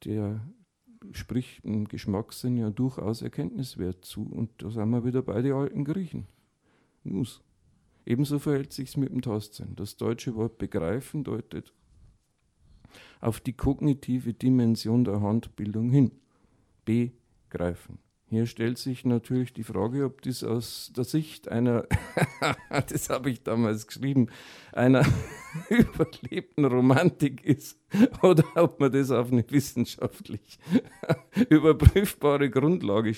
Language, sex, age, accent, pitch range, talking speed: German, male, 50-69, German, 110-135 Hz, 125 wpm